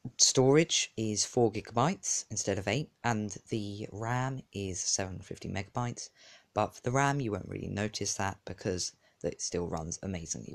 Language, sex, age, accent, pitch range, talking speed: English, female, 20-39, British, 100-135 Hz, 140 wpm